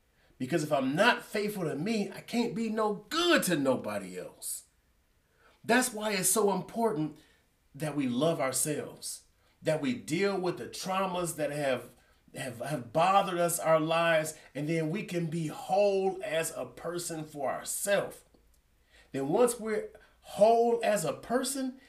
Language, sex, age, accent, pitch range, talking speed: English, male, 30-49, American, 150-210 Hz, 155 wpm